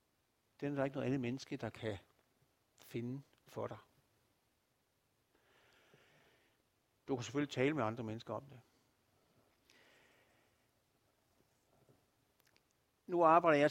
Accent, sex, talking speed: native, male, 105 wpm